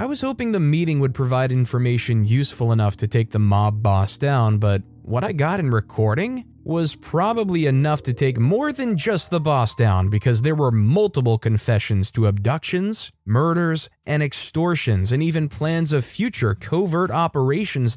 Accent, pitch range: American, 110-150 Hz